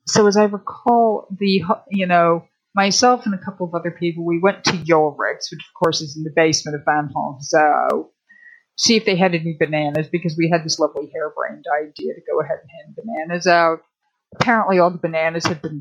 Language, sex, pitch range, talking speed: English, female, 160-200 Hz, 215 wpm